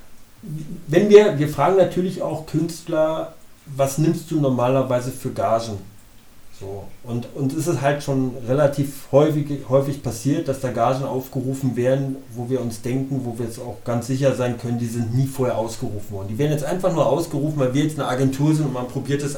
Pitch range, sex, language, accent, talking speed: 125-150 Hz, male, German, German, 195 wpm